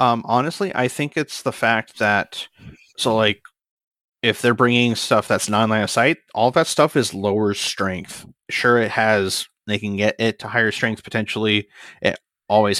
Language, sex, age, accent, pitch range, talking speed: English, male, 30-49, American, 100-125 Hz, 180 wpm